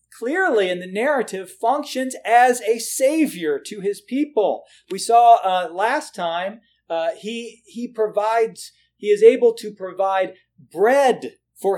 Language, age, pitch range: English, 40-59, 165-260 Hz